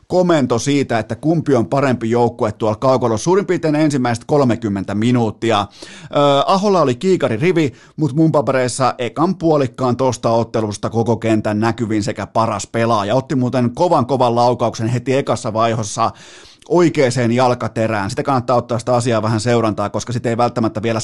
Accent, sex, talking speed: native, male, 150 wpm